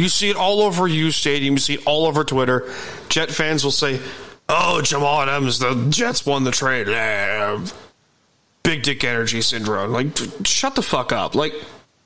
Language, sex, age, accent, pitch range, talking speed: English, male, 30-49, American, 135-180 Hz, 170 wpm